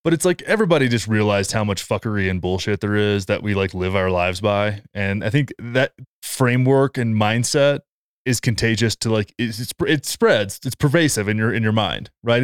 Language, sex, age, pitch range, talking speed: English, male, 20-39, 105-135 Hz, 205 wpm